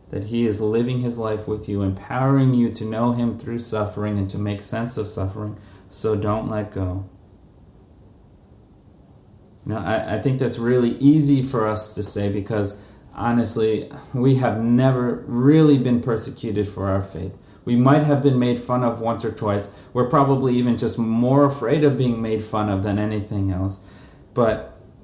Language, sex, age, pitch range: English, male, 30-49, 100-125 Hz